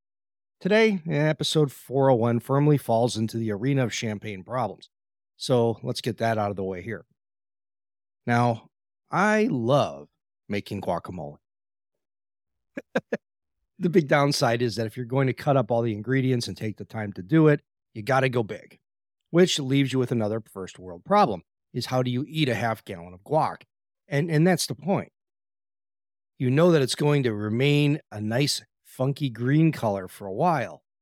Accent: American